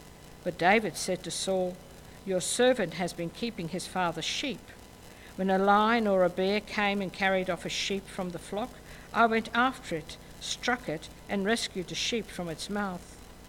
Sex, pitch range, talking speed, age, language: female, 175-215 Hz, 180 wpm, 60-79, English